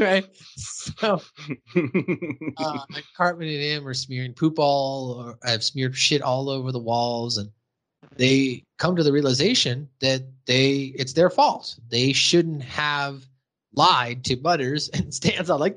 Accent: American